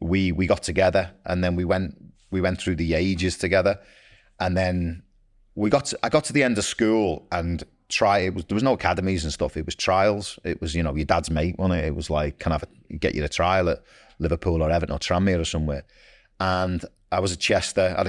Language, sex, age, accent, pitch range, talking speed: English, male, 30-49, British, 80-95 Hz, 245 wpm